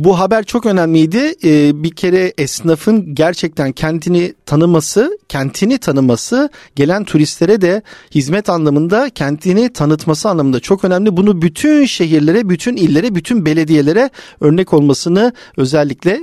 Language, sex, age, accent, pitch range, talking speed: Turkish, male, 50-69, native, 155-230 Hz, 120 wpm